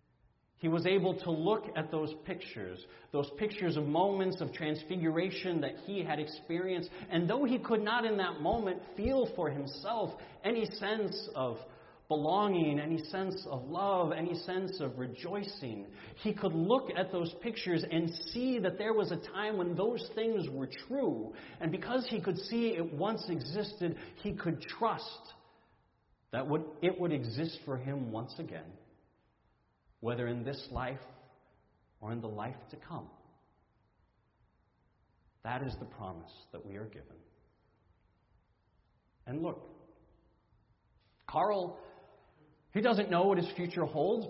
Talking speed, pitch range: 145 wpm, 130-190 Hz